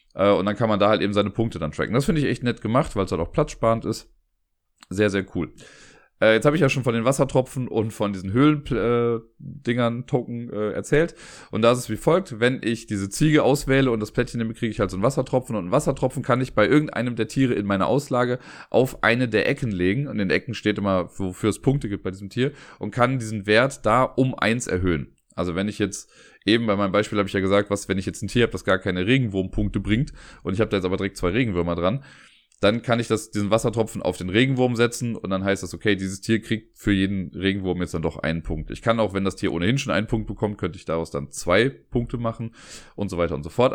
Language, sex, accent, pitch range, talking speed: German, male, German, 95-125 Hz, 250 wpm